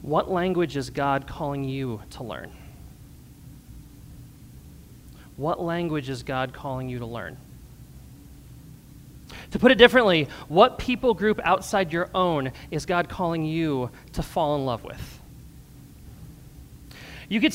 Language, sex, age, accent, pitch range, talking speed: English, male, 30-49, American, 160-220 Hz, 125 wpm